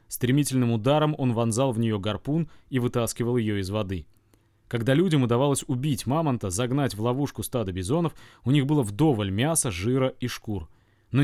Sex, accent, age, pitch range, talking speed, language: male, native, 30-49, 105-140 Hz, 165 wpm, Russian